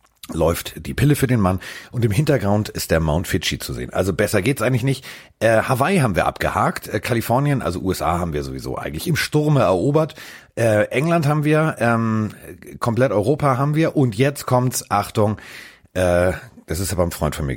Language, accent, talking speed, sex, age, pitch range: German, German, 200 wpm, male, 40-59, 85-120 Hz